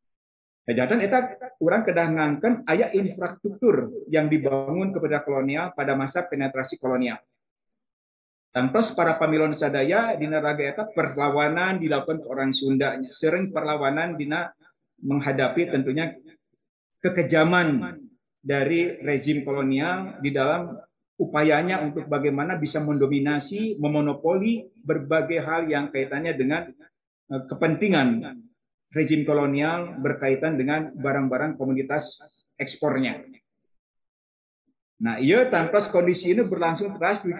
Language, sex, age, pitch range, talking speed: Indonesian, male, 50-69, 145-180 Hz, 105 wpm